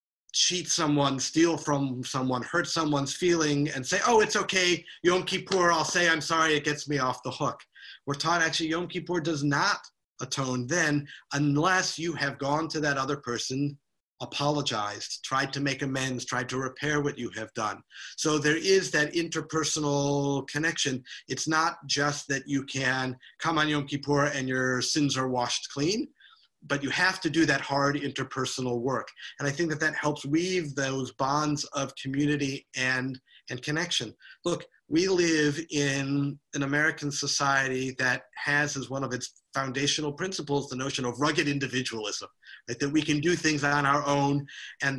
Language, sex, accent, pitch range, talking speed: English, male, American, 135-160 Hz, 170 wpm